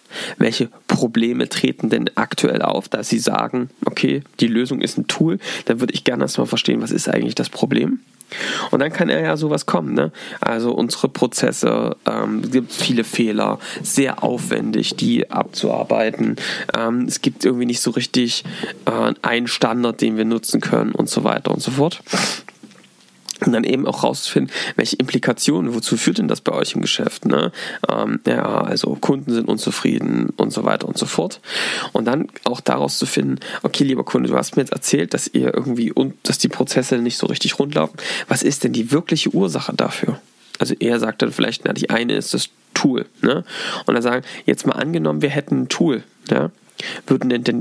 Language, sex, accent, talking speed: German, male, German, 195 wpm